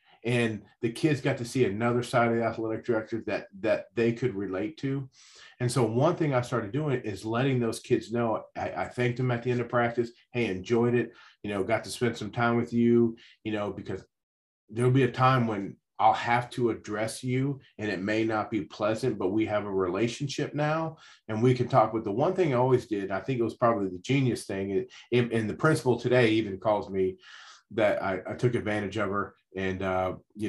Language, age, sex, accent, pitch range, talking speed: English, 40-59, male, American, 110-125 Hz, 220 wpm